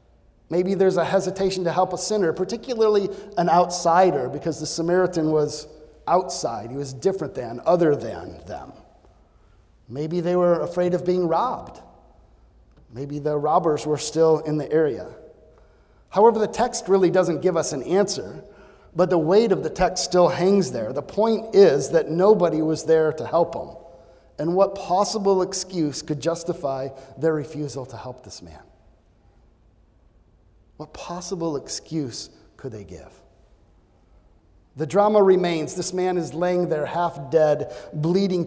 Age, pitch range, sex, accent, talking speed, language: 40-59, 135-180 Hz, male, American, 150 wpm, English